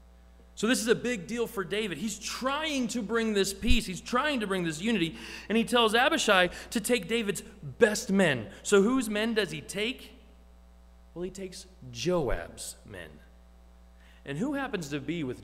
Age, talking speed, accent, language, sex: 30-49, 180 wpm, American, English, male